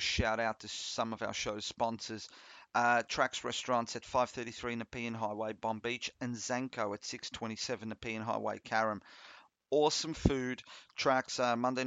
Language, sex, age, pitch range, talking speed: English, male, 40-59, 110-125 Hz, 145 wpm